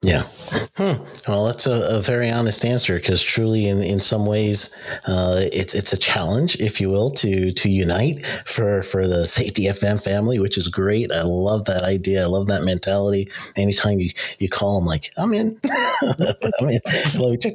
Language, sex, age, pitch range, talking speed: English, male, 40-59, 90-110 Hz, 190 wpm